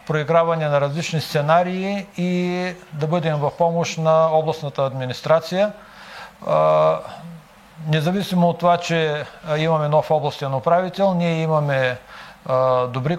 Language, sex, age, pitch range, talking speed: Bulgarian, male, 50-69, 140-175 Hz, 105 wpm